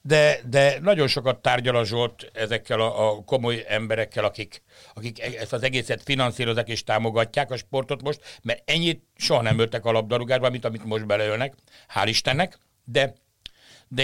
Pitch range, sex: 110-145 Hz, male